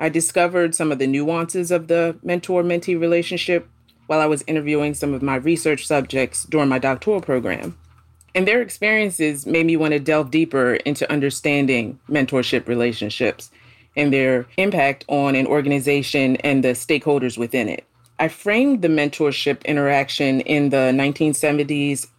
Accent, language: American, English